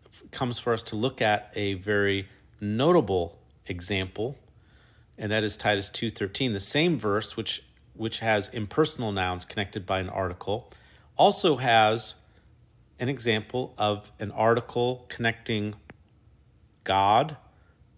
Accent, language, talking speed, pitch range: American, English, 120 wpm, 95-115 Hz